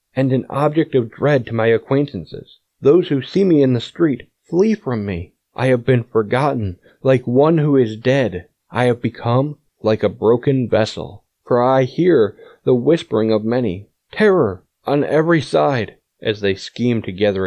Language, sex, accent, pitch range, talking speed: English, male, American, 110-135 Hz, 170 wpm